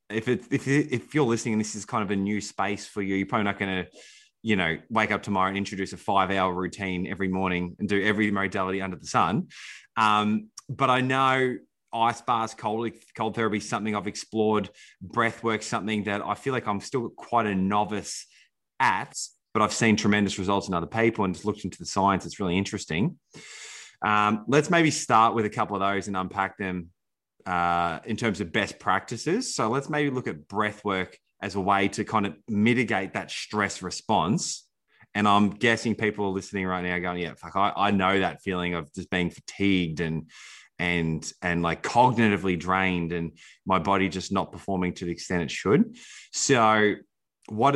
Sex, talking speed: male, 200 wpm